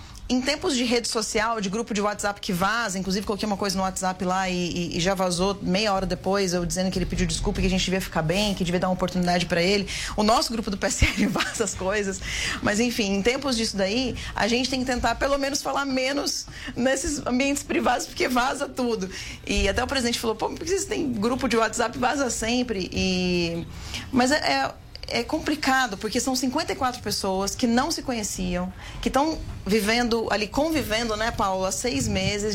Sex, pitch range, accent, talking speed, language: female, 195-265 Hz, Brazilian, 205 wpm, Portuguese